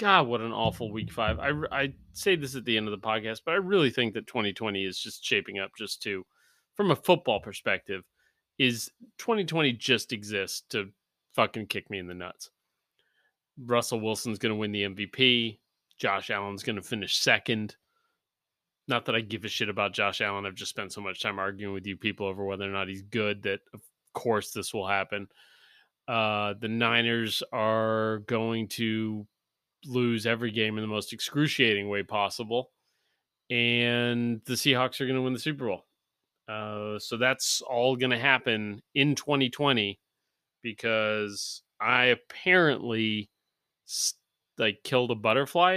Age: 30-49